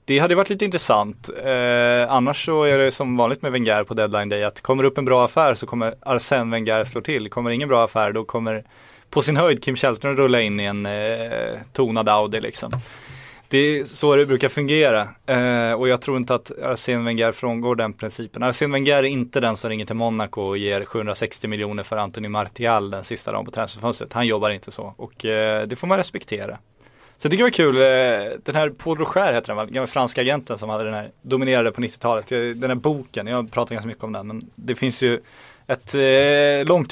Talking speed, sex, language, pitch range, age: 225 wpm, male, Swedish, 110-130 Hz, 20-39